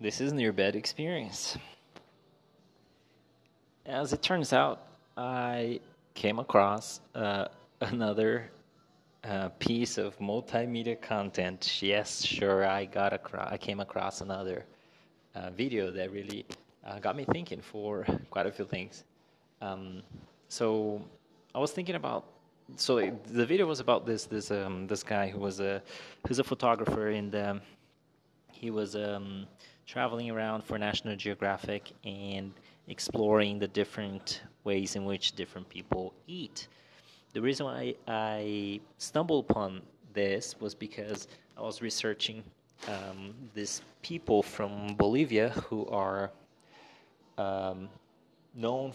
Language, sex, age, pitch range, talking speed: English, male, 20-39, 100-115 Hz, 130 wpm